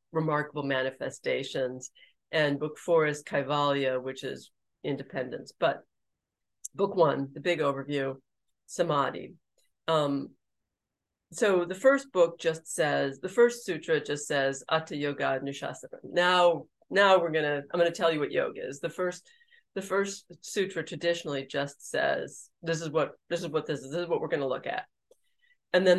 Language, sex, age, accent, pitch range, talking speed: English, female, 40-59, American, 140-175 Hz, 165 wpm